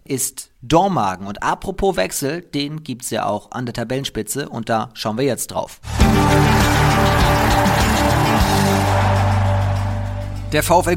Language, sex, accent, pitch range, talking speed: German, male, German, 115-150 Hz, 115 wpm